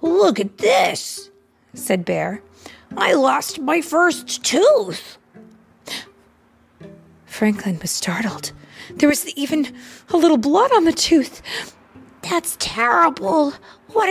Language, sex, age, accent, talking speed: English, female, 30-49, American, 105 wpm